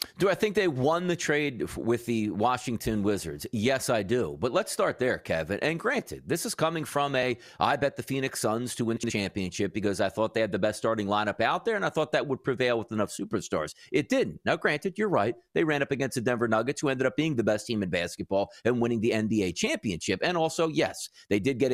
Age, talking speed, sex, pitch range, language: 40-59, 245 wpm, male, 115-155 Hz, English